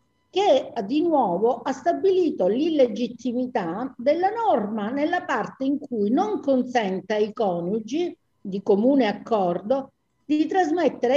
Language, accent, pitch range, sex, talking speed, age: Italian, native, 200-275 Hz, female, 115 wpm, 50-69